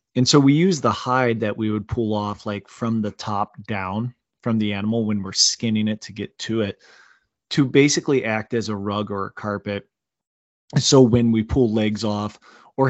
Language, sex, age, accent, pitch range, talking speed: English, male, 20-39, American, 105-125 Hz, 200 wpm